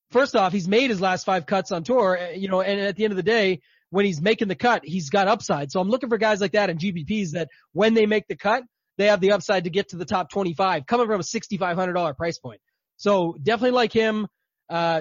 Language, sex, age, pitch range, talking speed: English, male, 20-39, 185-215 Hz, 250 wpm